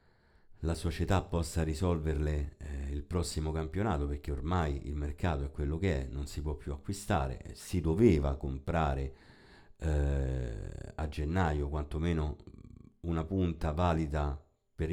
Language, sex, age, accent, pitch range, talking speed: Italian, male, 50-69, native, 75-90 Hz, 130 wpm